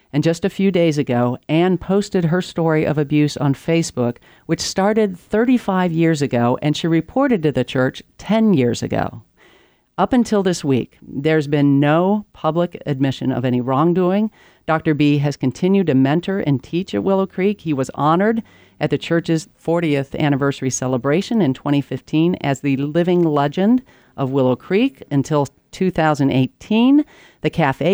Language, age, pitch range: English, 40-59, 140-180 Hz